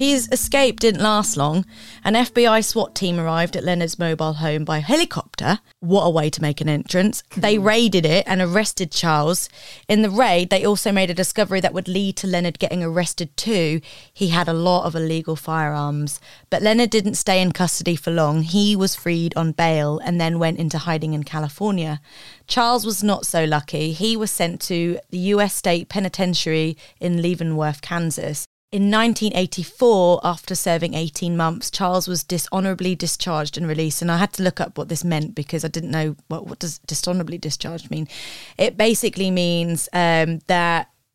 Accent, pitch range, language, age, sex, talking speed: British, 160-190 Hz, English, 20-39, female, 180 wpm